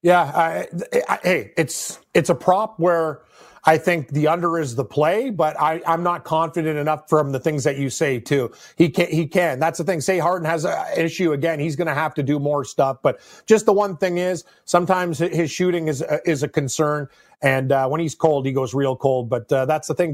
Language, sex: English, male